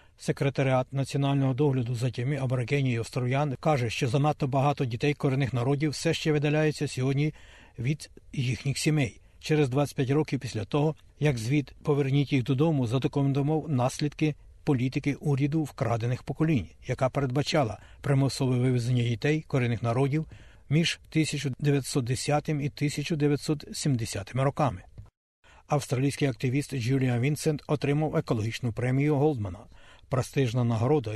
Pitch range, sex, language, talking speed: 120-145 Hz, male, Ukrainian, 115 wpm